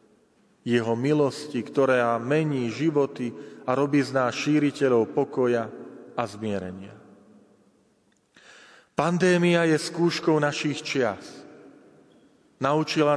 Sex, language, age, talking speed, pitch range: male, Slovak, 40-59, 85 wpm, 120-150 Hz